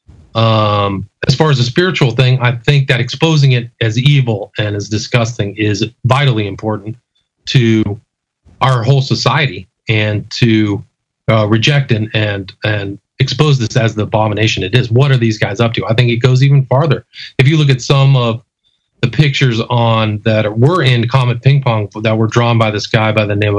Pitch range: 110-135 Hz